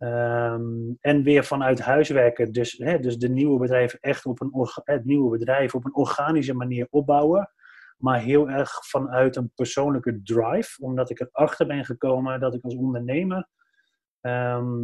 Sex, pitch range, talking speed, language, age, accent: male, 125-150 Hz, 125 wpm, English, 30-49, Dutch